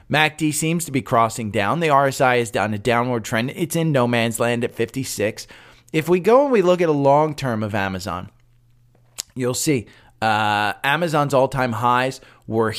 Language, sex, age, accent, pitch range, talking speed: English, male, 30-49, American, 110-145 Hz, 185 wpm